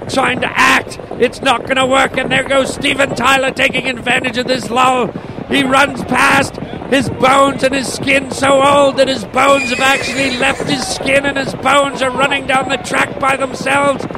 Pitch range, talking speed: 225-275 Hz, 195 wpm